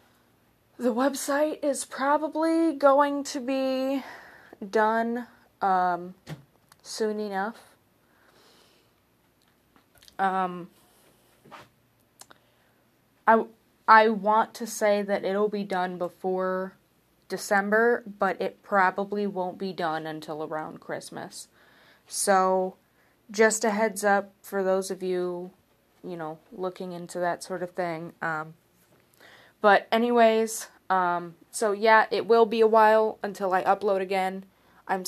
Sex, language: female, English